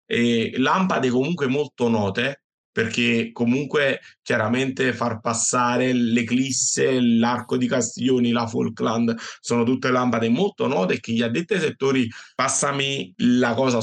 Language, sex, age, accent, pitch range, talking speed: Italian, male, 30-49, native, 120-135 Hz, 120 wpm